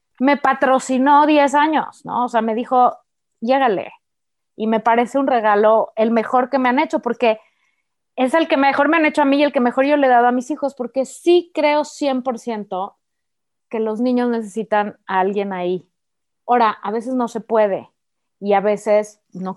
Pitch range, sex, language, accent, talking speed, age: 215-285 Hz, female, Spanish, Mexican, 195 wpm, 30-49